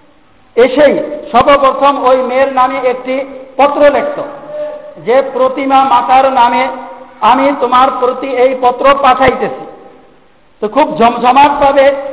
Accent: native